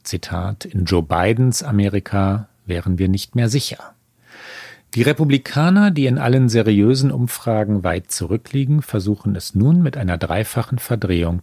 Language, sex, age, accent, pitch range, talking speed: German, male, 40-59, German, 95-125 Hz, 135 wpm